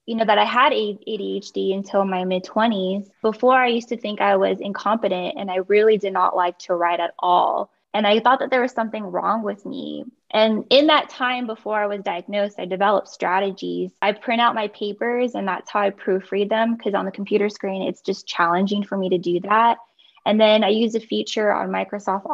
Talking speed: 220 wpm